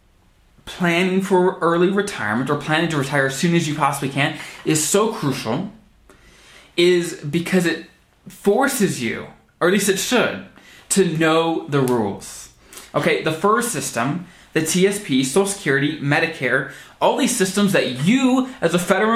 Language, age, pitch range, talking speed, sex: English, 20-39, 140-190 Hz, 150 wpm, male